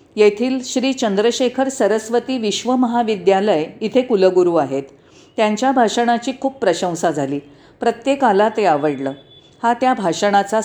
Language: Marathi